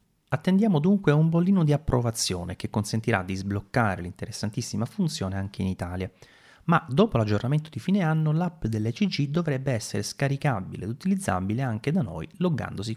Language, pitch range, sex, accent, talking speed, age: Italian, 95-155 Hz, male, native, 150 wpm, 30-49